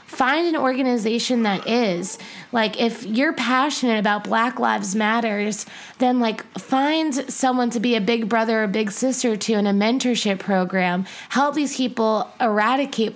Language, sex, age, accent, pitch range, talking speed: English, female, 20-39, American, 205-250 Hz, 155 wpm